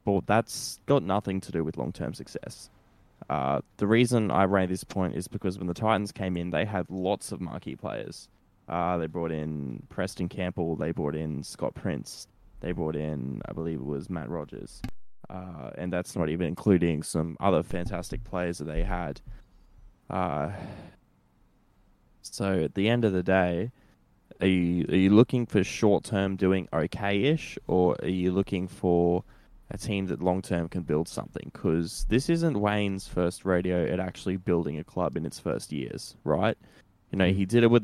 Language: English